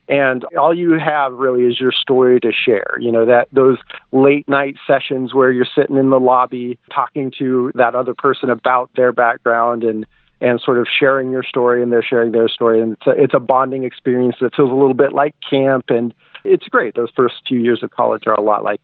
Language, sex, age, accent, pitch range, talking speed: English, male, 40-59, American, 120-150 Hz, 225 wpm